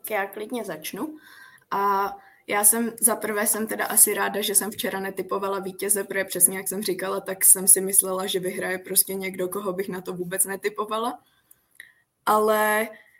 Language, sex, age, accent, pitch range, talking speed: Czech, female, 20-39, native, 195-215 Hz, 175 wpm